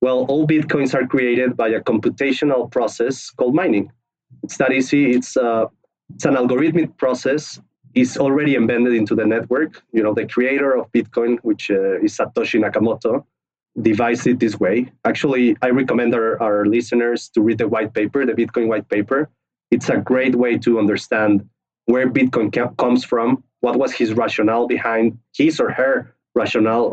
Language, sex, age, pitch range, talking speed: English, male, 30-49, 115-135 Hz, 170 wpm